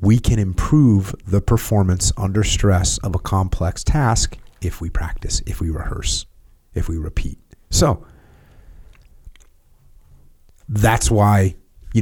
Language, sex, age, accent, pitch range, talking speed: English, male, 30-49, American, 85-115 Hz, 120 wpm